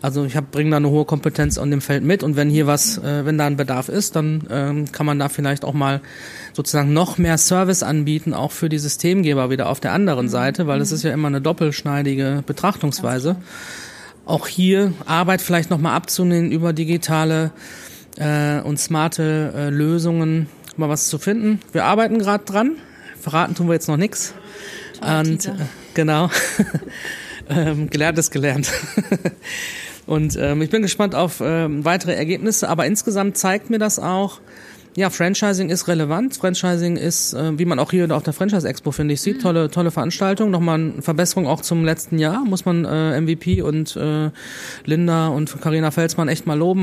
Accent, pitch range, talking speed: German, 150-180 Hz, 175 wpm